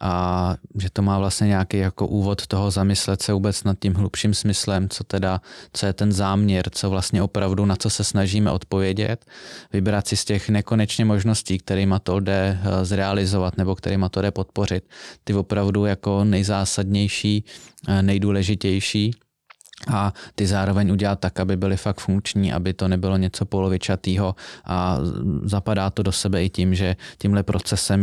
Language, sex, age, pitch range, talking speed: Czech, male, 20-39, 95-105 Hz, 160 wpm